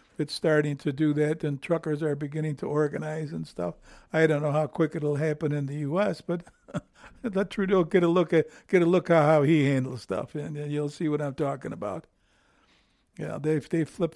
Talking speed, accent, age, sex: 210 wpm, American, 60-79, male